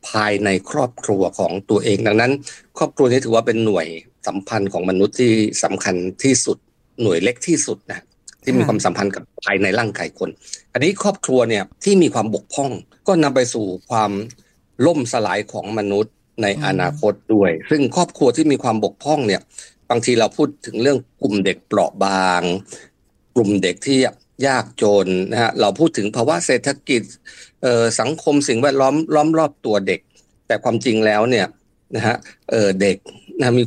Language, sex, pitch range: Thai, male, 100-130 Hz